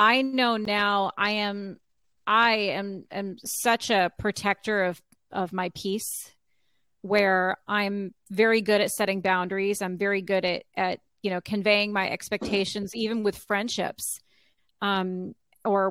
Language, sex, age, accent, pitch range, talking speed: English, female, 30-49, American, 190-230 Hz, 140 wpm